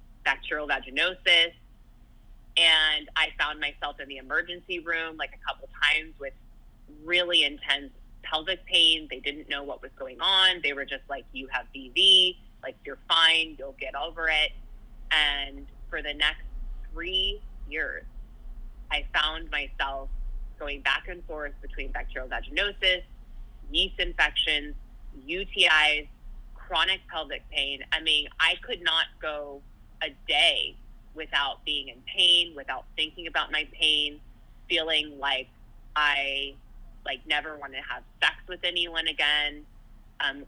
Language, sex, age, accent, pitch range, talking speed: English, female, 20-39, American, 135-160 Hz, 135 wpm